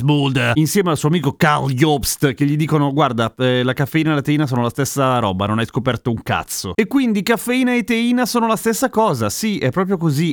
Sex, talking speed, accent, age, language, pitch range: male, 220 wpm, native, 30-49, Italian, 125-180 Hz